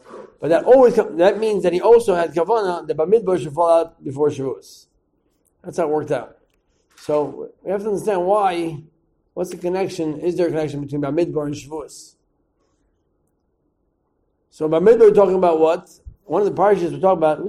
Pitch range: 155-185 Hz